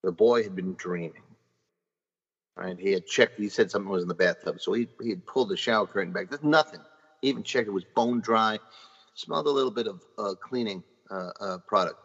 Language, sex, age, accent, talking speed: English, male, 40-59, American, 220 wpm